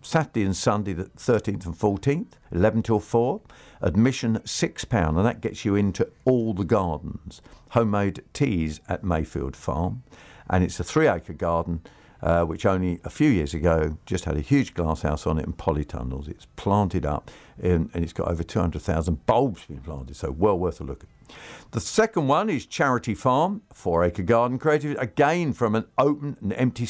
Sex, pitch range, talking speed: male, 90-140 Hz, 180 wpm